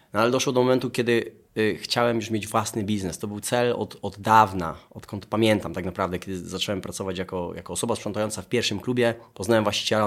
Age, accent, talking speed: 20-39, native, 205 wpm